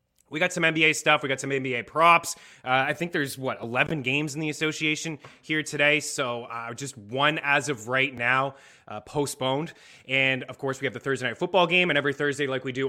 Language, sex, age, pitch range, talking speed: English, male, 20-39, 130-155 Hz, 225 wpm